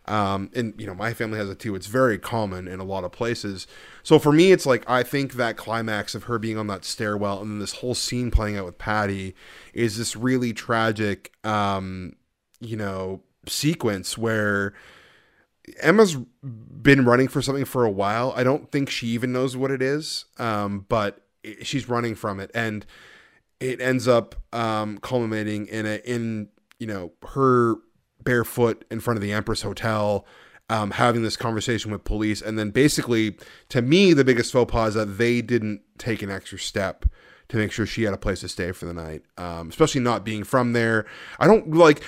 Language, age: English, 20-39